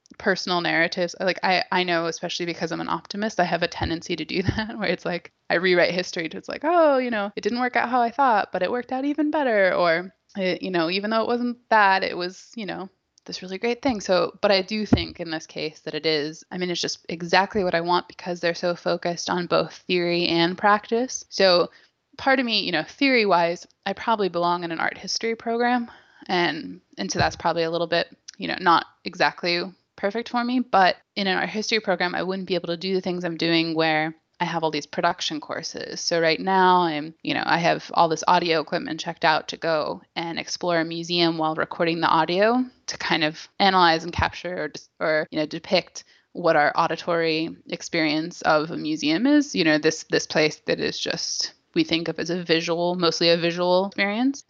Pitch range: 165-205 Hz